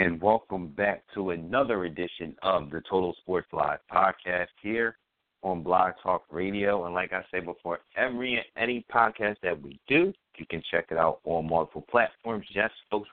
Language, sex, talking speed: English, male, 180 wpm